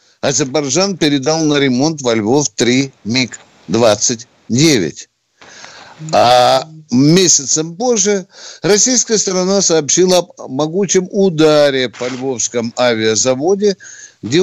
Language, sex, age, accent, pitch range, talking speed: Russian, male, 60-79, native, 130-195 Hz, 85 wpm